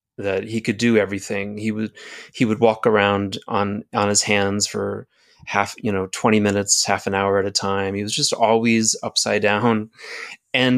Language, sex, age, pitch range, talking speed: English, male, 30-49, 105-125 Hz, 190 wpm